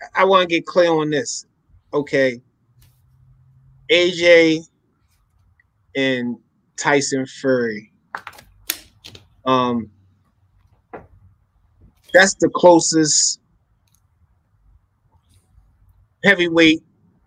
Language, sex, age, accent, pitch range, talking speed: English, male, 20-39, American, 115-155 Hz, 60 wpm